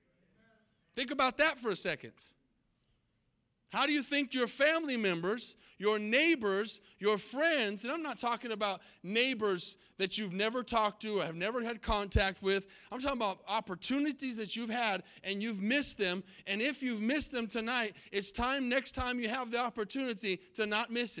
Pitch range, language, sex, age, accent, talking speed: 200-260 Hz, English, male, 40-59, American, 175 wpm